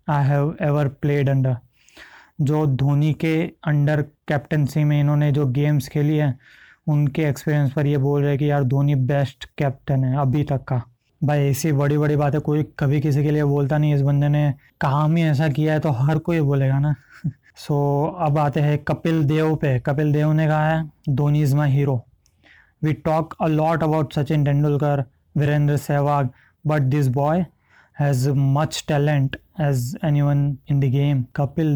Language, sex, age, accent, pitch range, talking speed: Hindi, male, 20-39, native, 140-155 Hz, 180 wpm